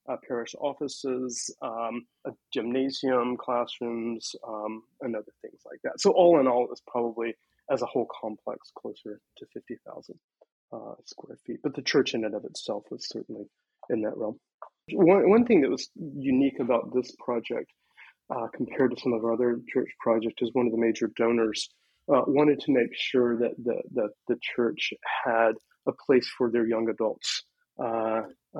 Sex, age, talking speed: male, 30-49, 175 wpm